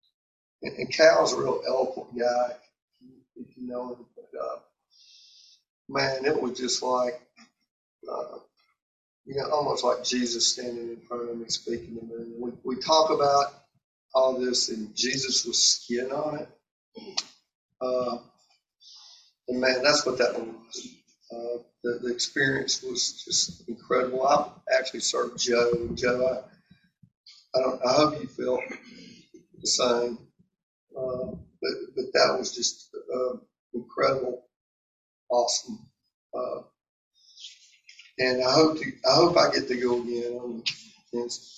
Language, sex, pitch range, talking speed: English, male, 120-140 Hz, 135 wpm